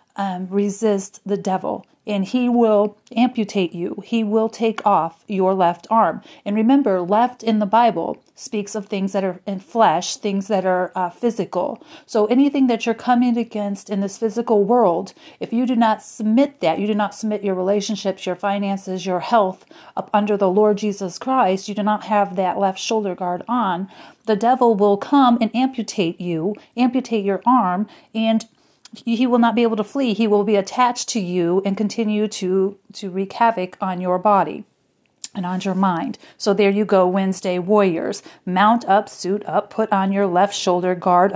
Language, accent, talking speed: English, American, 185 wpm